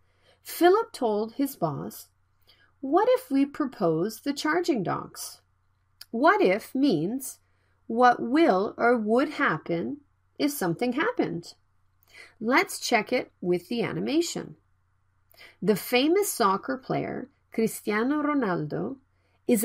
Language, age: Korean, 40-59